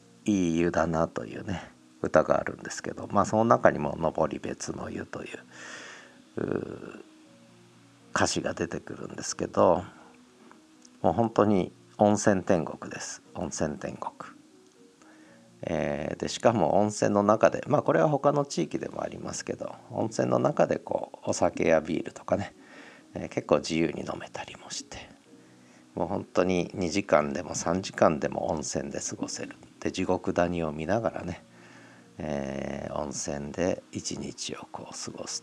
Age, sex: 50-69, male